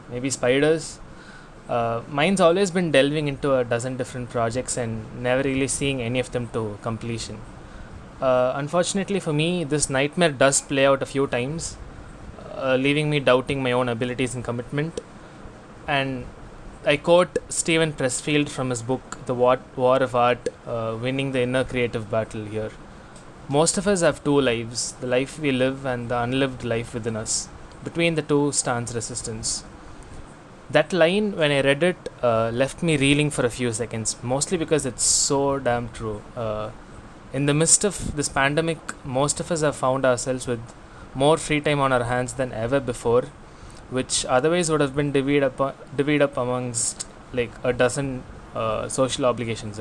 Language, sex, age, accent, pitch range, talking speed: English, male, 20-39, Indian, 120-150 Hz, 170 wpm